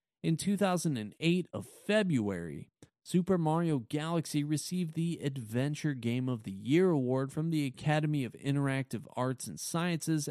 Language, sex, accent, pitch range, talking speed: English, male, American, 115-160 Hz, 135 wpm